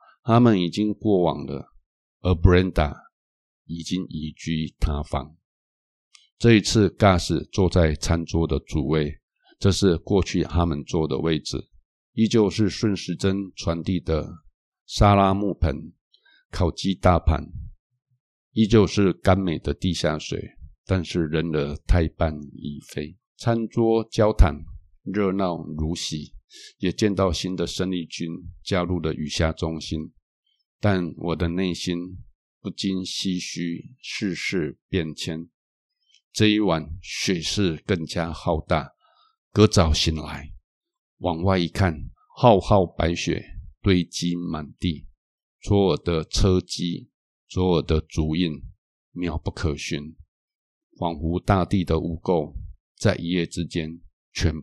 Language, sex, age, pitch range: Chinese, male, 60-79, 80-95 Hz